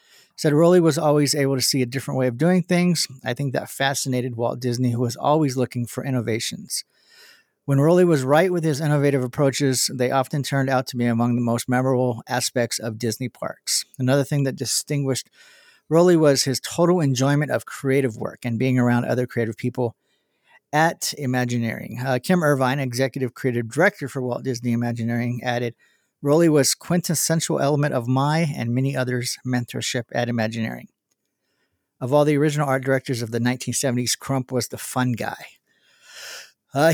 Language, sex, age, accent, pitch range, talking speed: English, male, 40-59, American, 125-150 Hz, 170 wpm